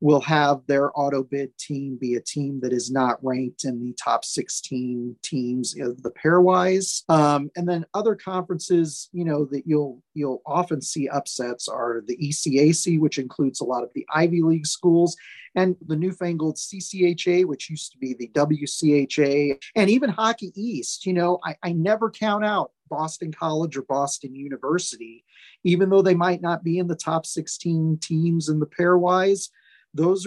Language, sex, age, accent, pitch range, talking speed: English, male, 30-49, American, 145-180 Hz, 175 wpm